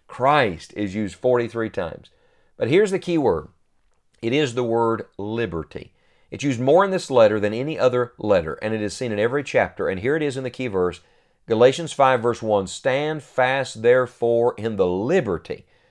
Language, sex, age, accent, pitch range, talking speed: English, male, 50-69, American, 105-140 Hz, 190 wpm